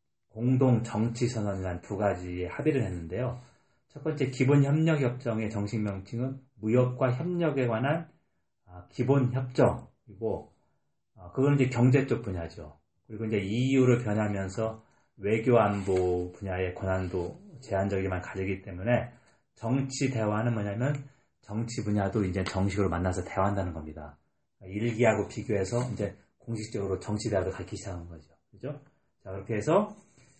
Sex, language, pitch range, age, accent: male, Korean, 95-130 Hz, 30-49, native